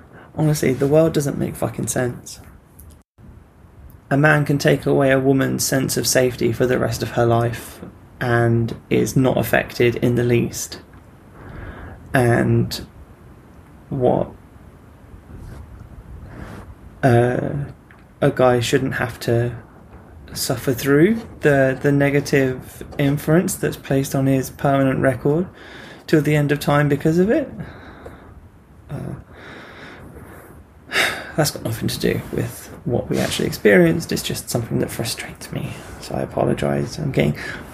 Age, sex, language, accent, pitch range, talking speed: 20-39, male, English, British, 115-150 Hz, 130 wpm